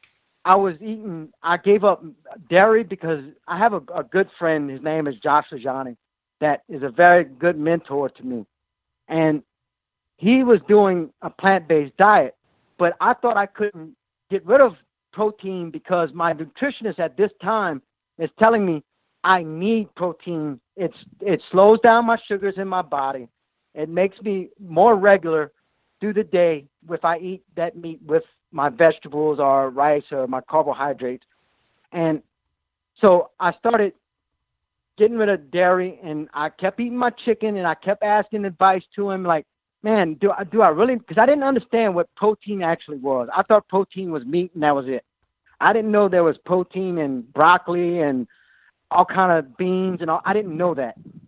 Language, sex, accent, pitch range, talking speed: English, male, American, 155-200 Hz, 175 wpm